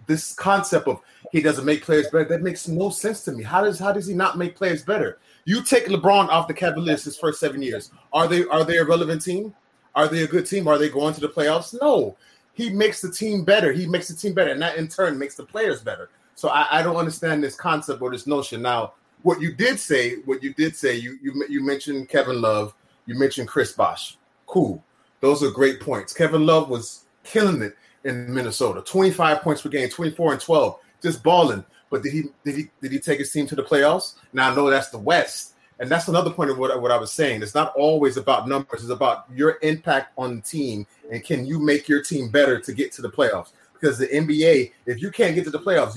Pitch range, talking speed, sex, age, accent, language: 140-180 Hz, 240 wpm, male, 30-49, American, English